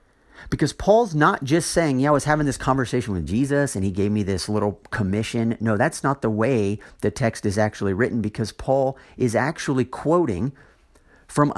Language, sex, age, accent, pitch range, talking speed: English, male, 50-69, American, 95-140 Hz, 185 wpm